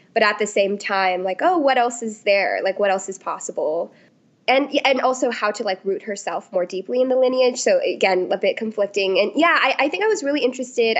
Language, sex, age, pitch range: English, female, 20-39, 195-255 Hz